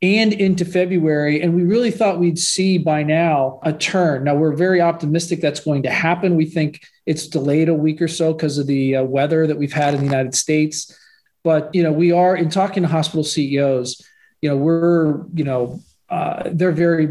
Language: English